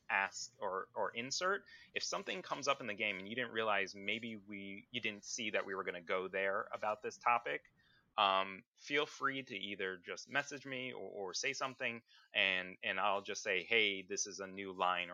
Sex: male